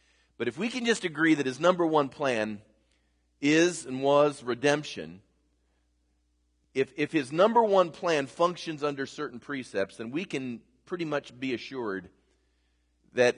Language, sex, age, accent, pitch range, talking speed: English, male, 40-59, American, 110-165 Hz, 150 wpm